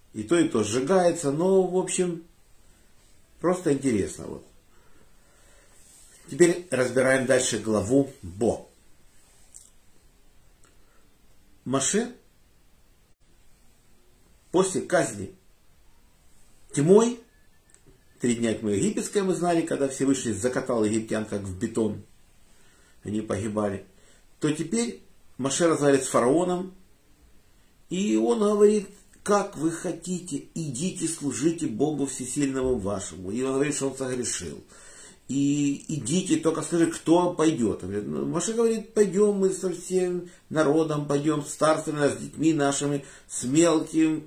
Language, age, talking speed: Russian, 50-69, 110 wpm